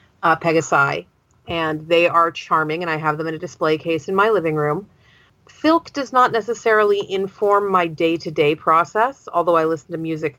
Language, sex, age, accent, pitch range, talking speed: English, female, 40-59, American, 155-185 Hz, 180 wpm